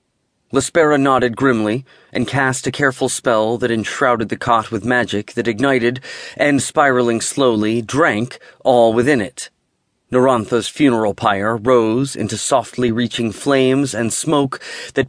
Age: 30-49